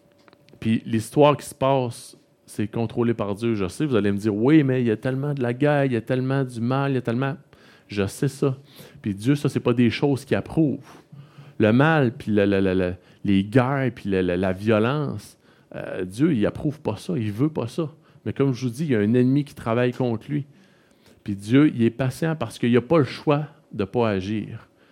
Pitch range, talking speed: 105-130 Hz, 245 wpm